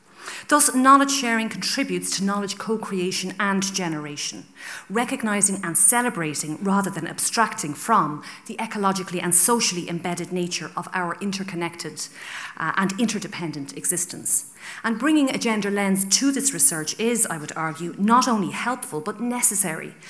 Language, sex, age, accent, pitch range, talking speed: English, female, 40-59, Irish, 170-225 Hz, 135 wpm